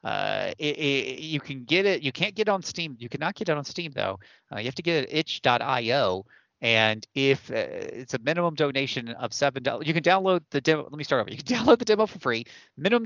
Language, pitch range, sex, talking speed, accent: English, 115-150 Hz, male, 255 wpm, American